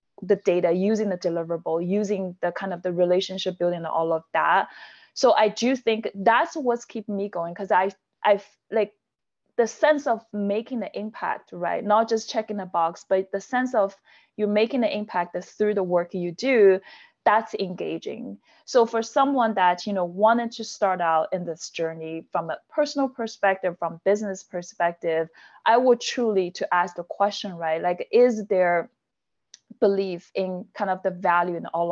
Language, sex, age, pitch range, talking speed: English, female, 20-39, 180-220 Hz, 180 wpm